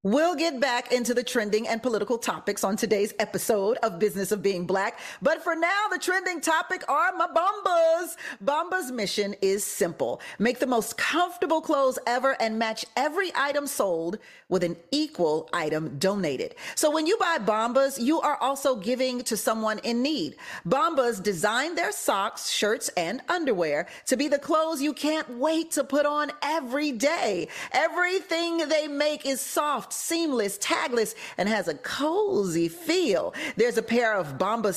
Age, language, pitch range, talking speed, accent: 40-59, English, 220-330 Hz, 165 wpm, American